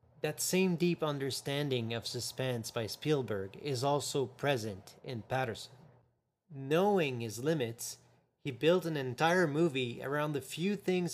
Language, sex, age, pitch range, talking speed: English, male, 30-49, 120-155 Hz, 135 wpm